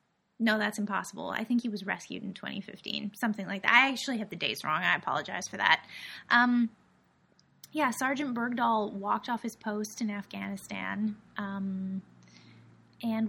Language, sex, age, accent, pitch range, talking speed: English, female, 20-39, American, 205-235 Hz, 160 wpm